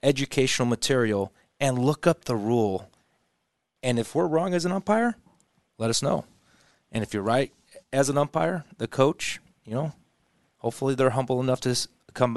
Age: 30-49